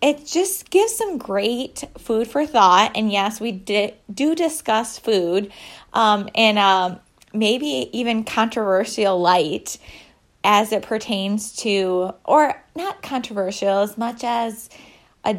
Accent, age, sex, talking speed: American, 20-39, female, 130 wpm